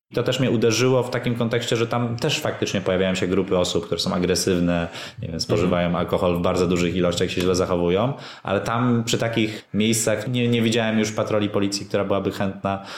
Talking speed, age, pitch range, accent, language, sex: 200 wpm, 20-39, 90-115 Hz, native, Polish, male